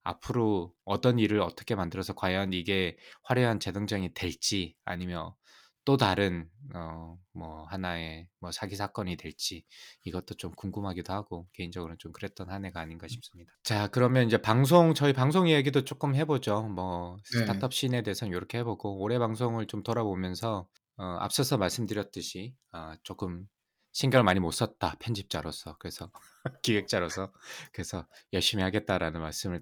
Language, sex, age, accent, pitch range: Korean, male, 20-39, native, 90-115 Hz